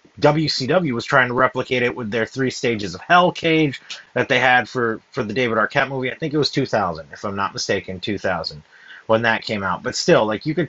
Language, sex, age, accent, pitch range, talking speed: English, male, 30-49, American, 125-160 Hz, 230 wpm